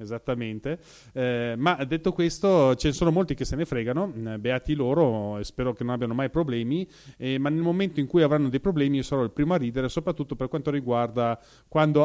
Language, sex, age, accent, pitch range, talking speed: Italian, male, 30-49, native, 120-145 Hz, 210 wpm